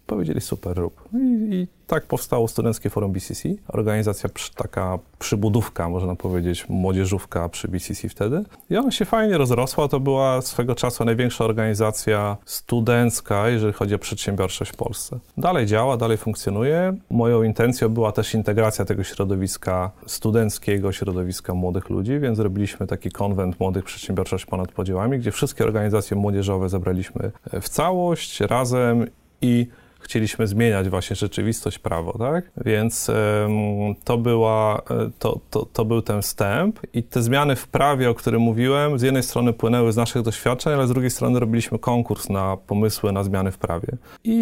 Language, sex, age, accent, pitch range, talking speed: Polish, male, 30-49, native, 100-125 Hz, 145 wpm